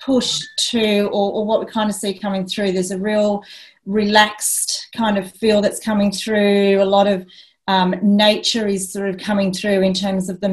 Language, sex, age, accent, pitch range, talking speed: English, female, 30-49, Australian, 180-210 Hz, 200 wpm